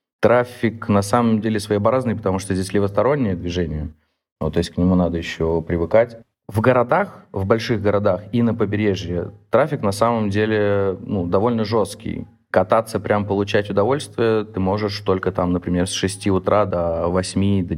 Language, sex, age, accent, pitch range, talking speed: Russian, male, 30-49, native, 90-110 Hz, 160 wpm